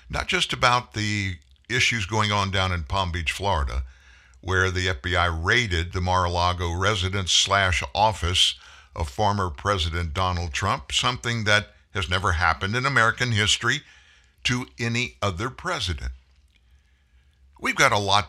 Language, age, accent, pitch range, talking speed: English, 60-79, American, 75-105 Hz, 140 wpm